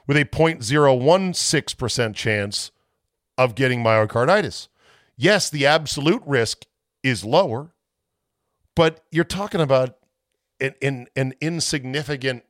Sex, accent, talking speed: male, American, 100 wpm